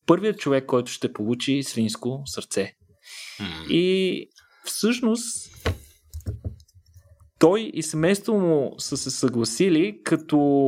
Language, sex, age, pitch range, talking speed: Bulgarian, male, 30-49, 120-155 Hz, 95 wpm